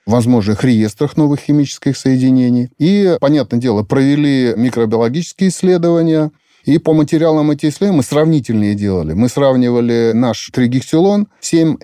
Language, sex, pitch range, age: Russian, male, 115-155 Hz, 30-49